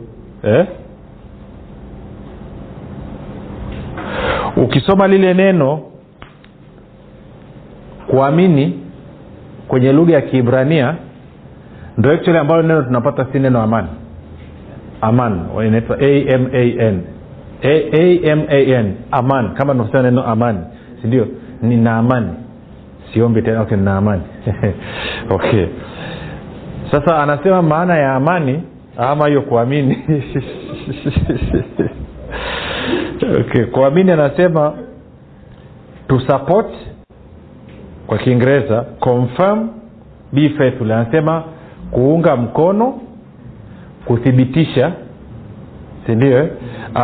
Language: Swahili